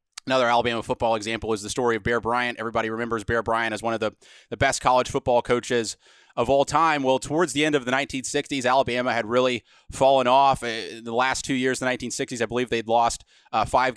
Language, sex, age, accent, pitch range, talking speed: English, male, 30-49, American, 120-140 Hz, 210 wpm